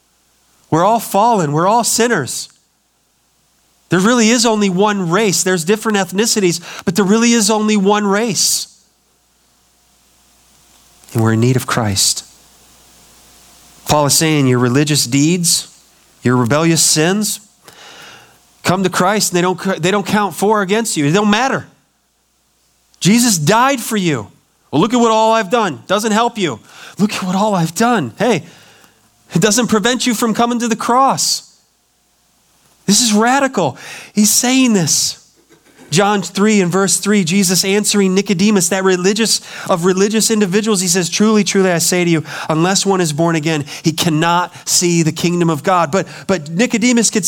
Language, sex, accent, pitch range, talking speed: English, male, American, 170-225 Hz, 160 wpm